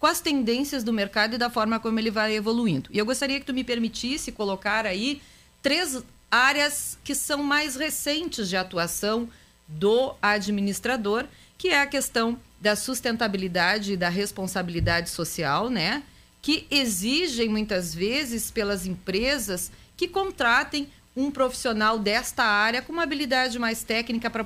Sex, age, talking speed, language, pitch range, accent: female, 40-59, 145 wpm, Portuguese, 190-255 Hz, Brazilian